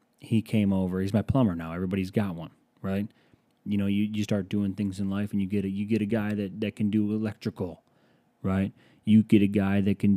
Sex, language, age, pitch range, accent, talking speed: male, English, 30-49, 95-110 Hz, American, 235 wpm